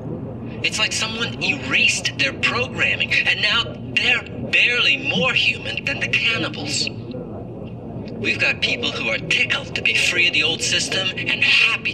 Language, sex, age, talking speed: English, male, 50-69, 150 wpm